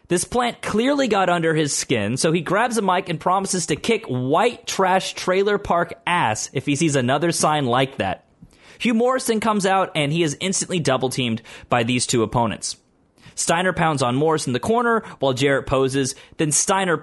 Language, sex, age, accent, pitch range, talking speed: English, male, 30-49, American, 135-190 Hz, 190 wpm